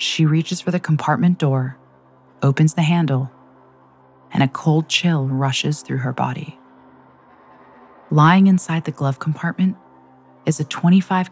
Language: English